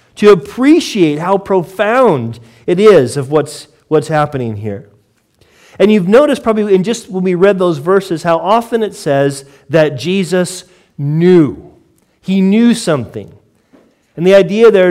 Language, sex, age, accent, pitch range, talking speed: English, male, 40-59, American, 145-195 Hz, 145 wpm